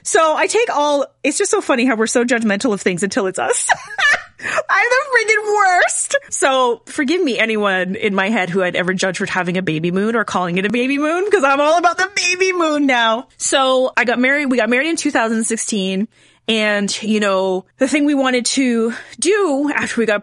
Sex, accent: female, American